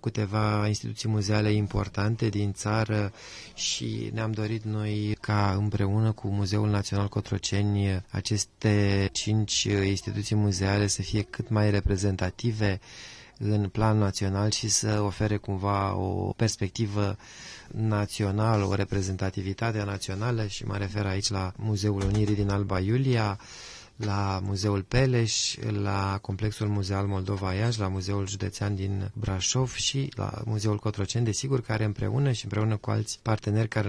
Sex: male